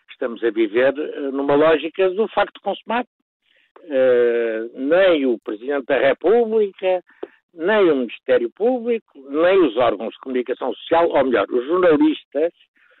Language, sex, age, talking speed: Portuguese, male, 60-79, 130 wpm